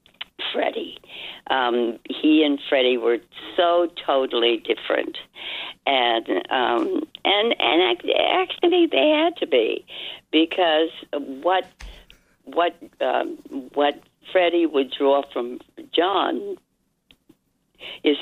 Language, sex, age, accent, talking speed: English, female, 60-79, American, 95 wpm